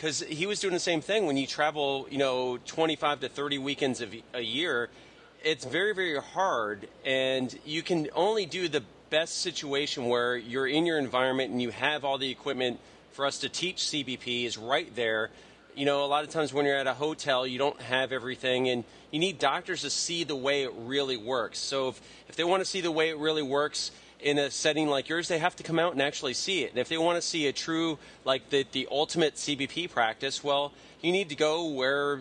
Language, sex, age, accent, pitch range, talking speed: English, male, 30-49, American, 125-150 Hz, 225 wpm